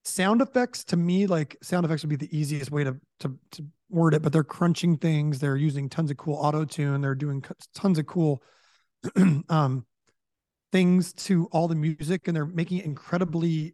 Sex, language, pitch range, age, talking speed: male, English, 150-180 Hz, 30-49, 190 wpm